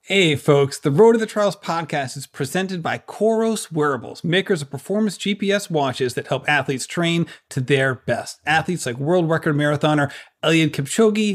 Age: 40-59